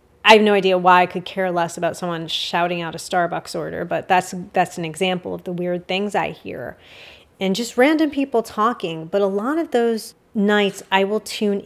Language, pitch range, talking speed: English, 180-205 Hz, 210 wpm